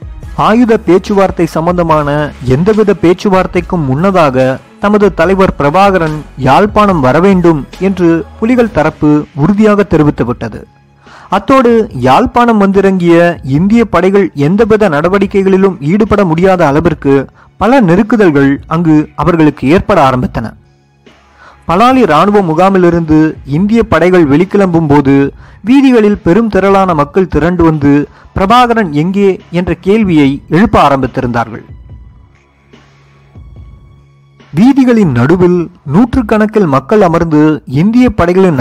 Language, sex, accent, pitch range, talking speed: Tamil, male, native, 145-205 Hz, 90 wpm